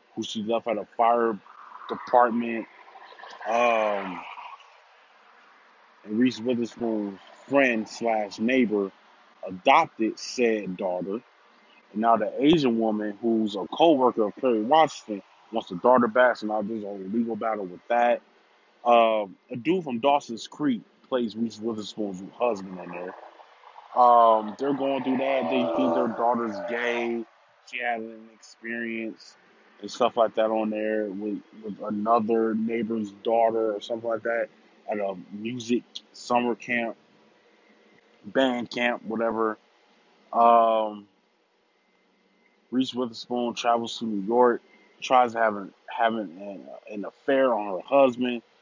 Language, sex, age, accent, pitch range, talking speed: English, male, 20-39, American, 110-120 Hz, 130 wpm